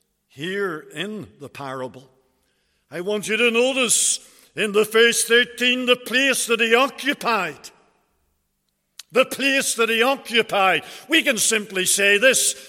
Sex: male